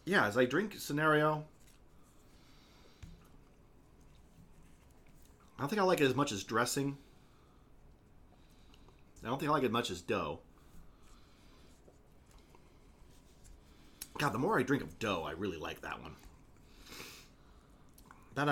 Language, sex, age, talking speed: English, male, 30-49, 125 wpm